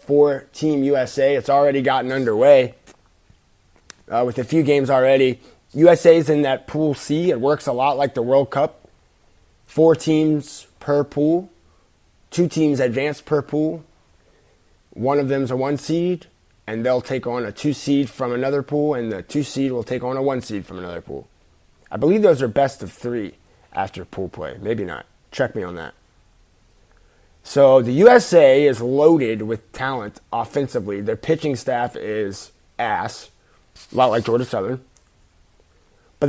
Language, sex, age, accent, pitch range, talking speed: English, male, 20-39, American, 120-150 Hz, 165 wpm